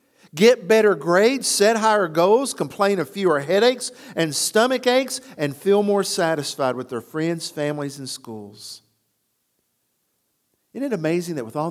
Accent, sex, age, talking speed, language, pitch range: American, male, 50-69, 150 wpm, English, 155-225 Hz